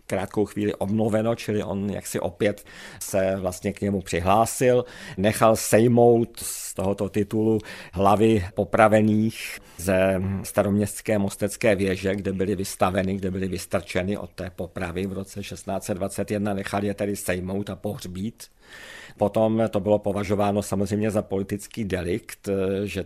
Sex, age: male, 50-69